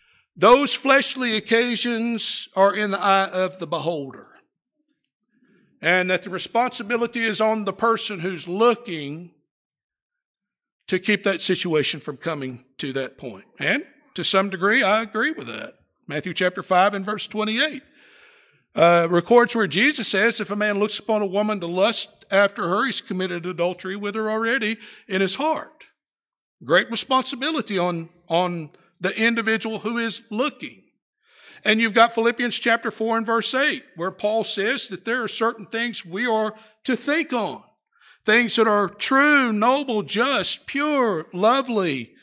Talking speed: 150 wpm